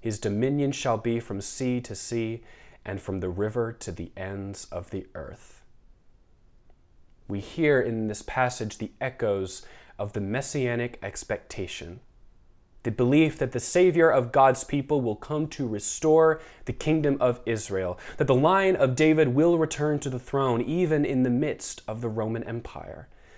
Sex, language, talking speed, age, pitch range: male, English, 160 wpm, 20-39, 110-145 Hz